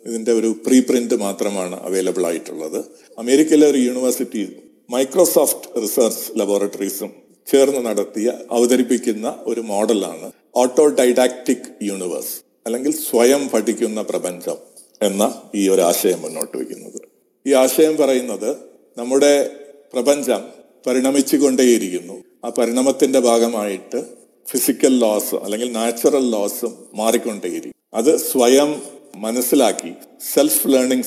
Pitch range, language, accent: 115-135 Hz, Malayalam, native